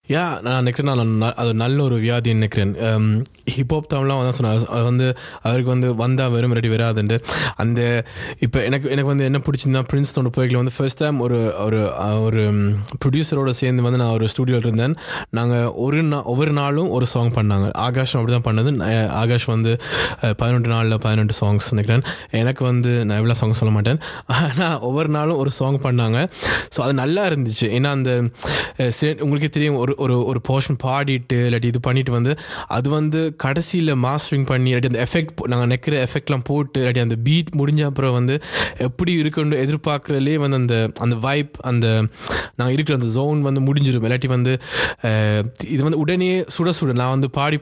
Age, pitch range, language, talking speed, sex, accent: 20-39, 120-140 Hz, Tamil, 110 wpm, male, native